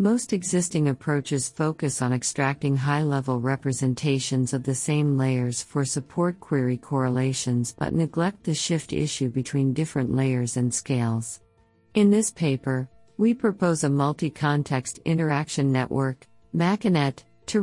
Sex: female